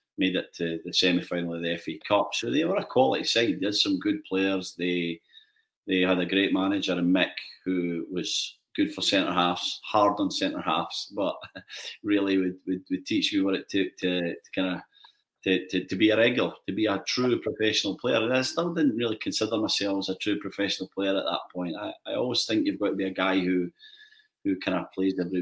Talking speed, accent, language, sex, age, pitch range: 220 wpm, British, English, male, 30-49, 90-145 Hz